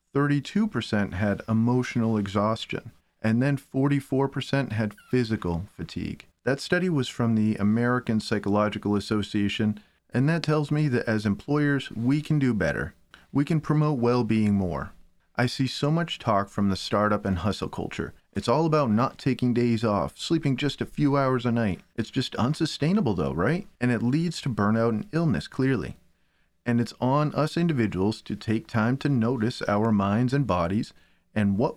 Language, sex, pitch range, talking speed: English, male, 105-140 Hz, 165 wpm